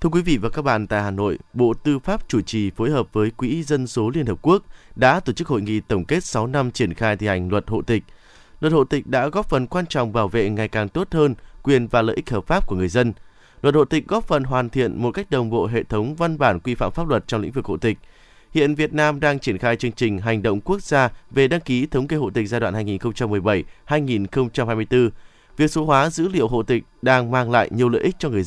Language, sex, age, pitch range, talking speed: Vietnamese, male, 20-39, 115-150 Hz, 260 wpm